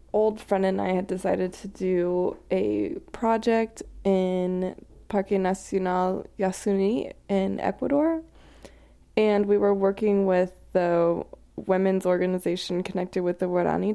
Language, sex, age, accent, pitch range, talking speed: English, female, 20-39, American, 180-205 Hz, 120 wpm